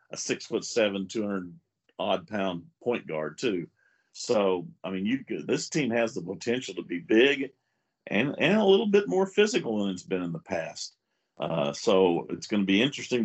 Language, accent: English, American